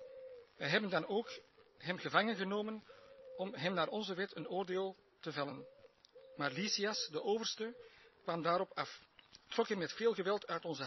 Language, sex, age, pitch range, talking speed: Dutch, male, 50-69, 165-205 Hz, 165 wpm